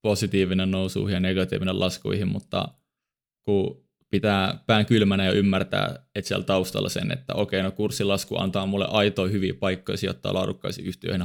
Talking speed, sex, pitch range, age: 155 wpm, male, 95-105 Hz, 20-39